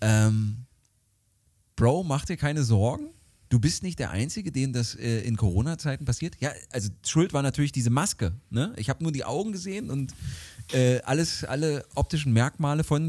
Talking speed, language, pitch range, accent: 175 wpm, German, 105-150 Hz, German